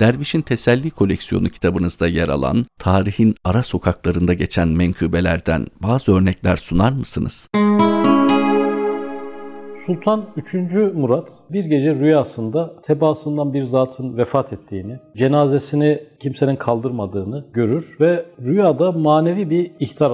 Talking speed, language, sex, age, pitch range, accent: 105 wpm, Turkish, male, 50-69, 115-165 Hz, native